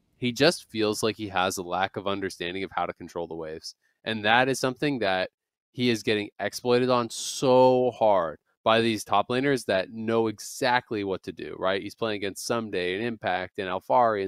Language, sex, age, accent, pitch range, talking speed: English, male, 20-39, American, 105-125 Hz, 200 wpm